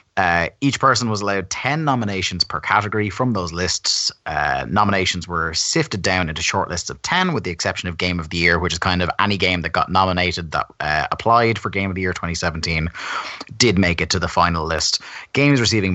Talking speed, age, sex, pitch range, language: 210 wpm, 30-49, male, 85-100 Hz, English